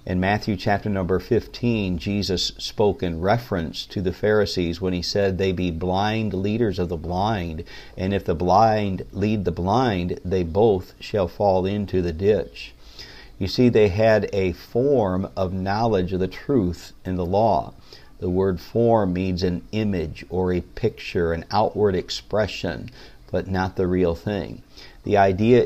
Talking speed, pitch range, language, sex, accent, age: 160 wpm, 90-105 Hz, English, male, American, 50-69